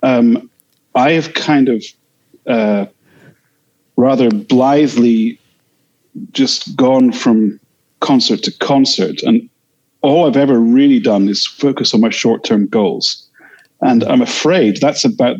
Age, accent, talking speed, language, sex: 40-59, British, 120 wpm, English, male